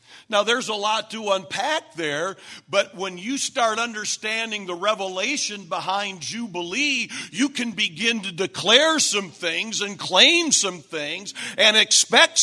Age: 50-69